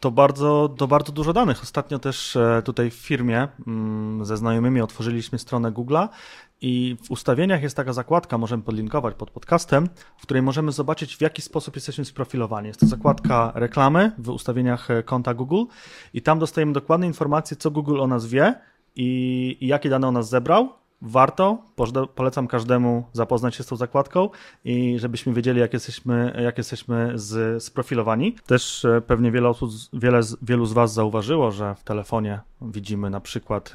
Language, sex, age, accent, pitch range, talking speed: Polish, male, 30-49, native, 115-135 Hz, 165 wpm